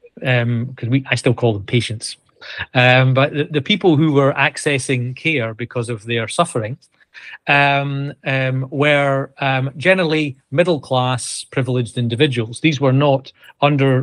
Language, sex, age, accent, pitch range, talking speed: English, male, 40-59, British, 125-150 Hz, 140 wpm